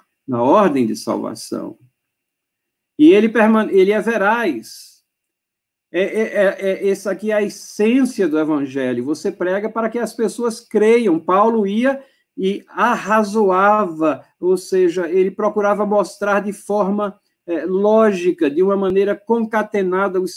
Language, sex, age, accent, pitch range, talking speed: Portuguese, male, 50-69, Brazilian, 190-265 Hz, 120 wpm